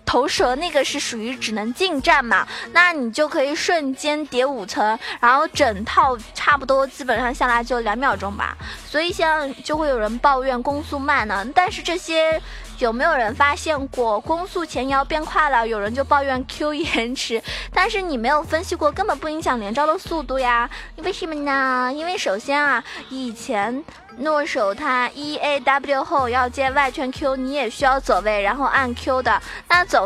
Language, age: Chinese, 20-39